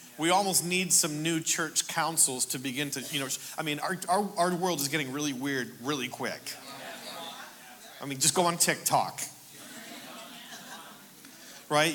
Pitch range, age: 130-165 Hz, 40-59